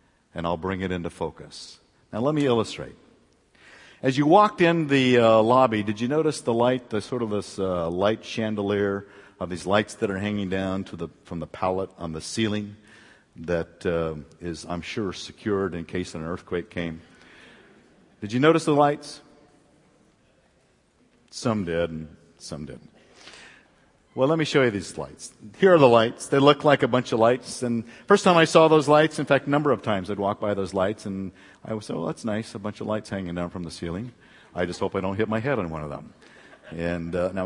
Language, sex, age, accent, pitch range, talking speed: English, male, 50-69, American, 90-125 Hz, 210 wpm